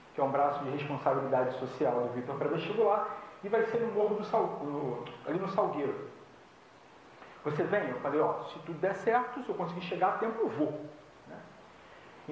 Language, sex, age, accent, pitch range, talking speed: Portuguese, male, 40-59, Brazilian, 150-210 Hz, 200 wpm